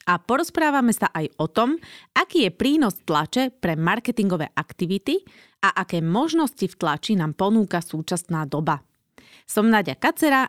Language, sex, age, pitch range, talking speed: Slovak, female, 30-49, 160-225 Hz, 145 wpm